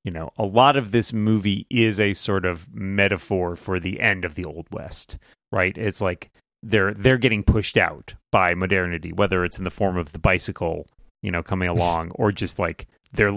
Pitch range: 95-120 Hz